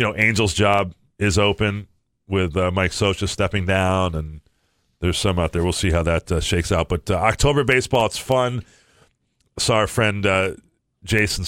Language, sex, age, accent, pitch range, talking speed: English, male, 40-59, American, 95-110 Hz, 185 wpm